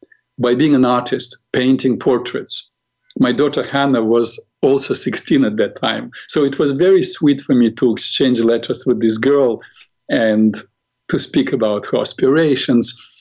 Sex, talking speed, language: male, 155 wpm, English